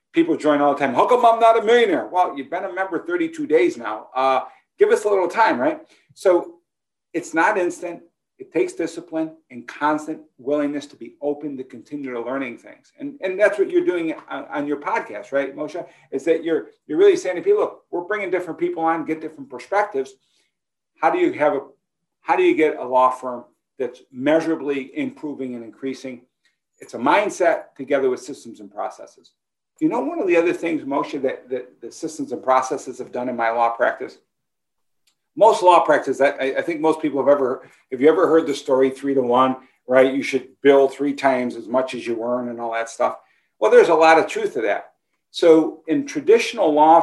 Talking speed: 210 wpm